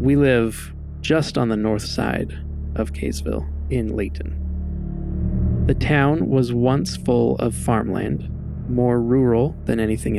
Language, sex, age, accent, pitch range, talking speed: English, male, 20-39, American, 100-130 Hz, 130 wpm